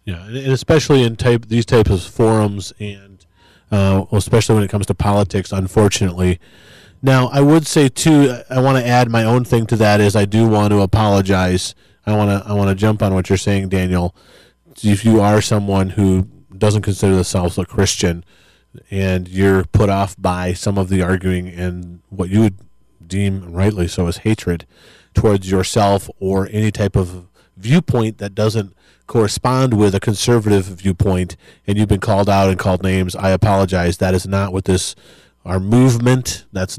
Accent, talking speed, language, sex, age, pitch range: American, 175 wpm, English, male, 30-49, 95-110 Hz